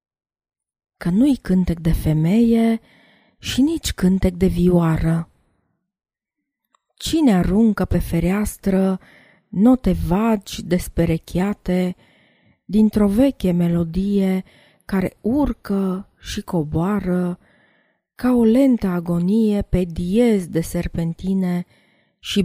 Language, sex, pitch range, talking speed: Romanian, female, 175-230 Hz, 90 wpm